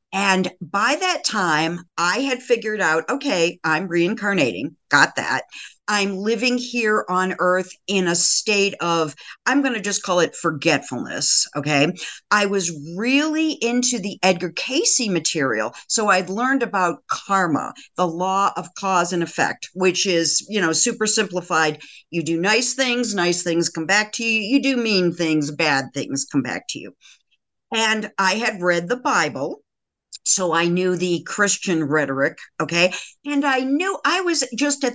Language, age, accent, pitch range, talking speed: English, 50-69, American, 170-230 Hz, 165 wpm